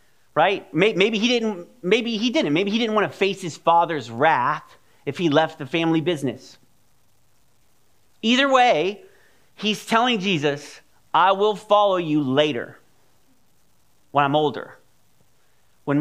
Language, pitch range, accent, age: English, 145-195 Hz, American, 40-59